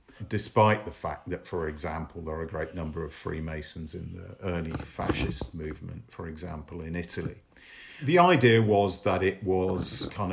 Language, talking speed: English, 170 wpm